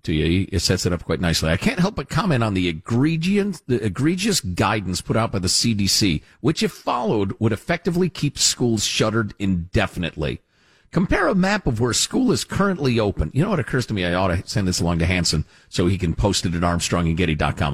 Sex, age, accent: male, 50-69, American